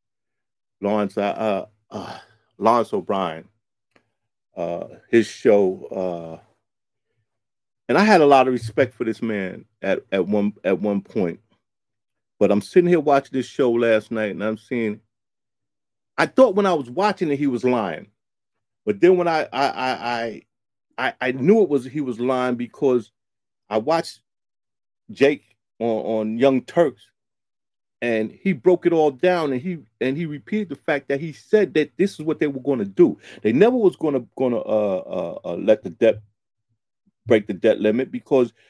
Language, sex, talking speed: English, male, 170 wpm